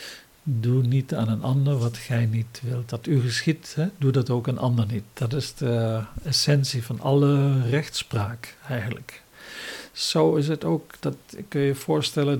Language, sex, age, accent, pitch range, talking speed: English, male, 50-69, Dutch, 125-145 Hz, 170 wpm